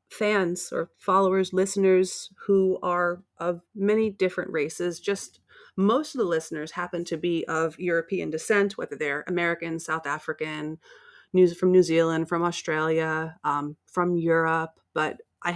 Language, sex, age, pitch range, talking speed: English, female, 30-49, 160-190 Hz, 145 wpm